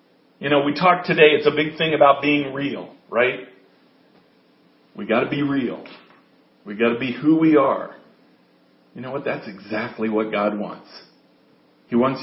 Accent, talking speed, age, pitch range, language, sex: American, 170 wpm, 50-69, 150-210 Hz, English, male